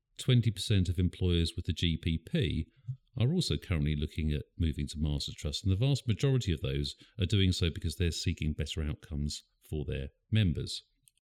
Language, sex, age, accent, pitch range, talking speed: English, male, 50-69, British, 75-100 Hz, 165 wpm